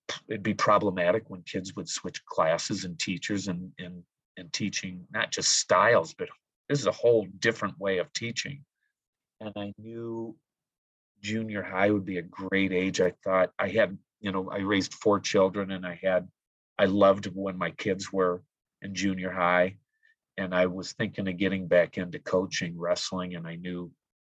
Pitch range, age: 90-100 Hz, 40-59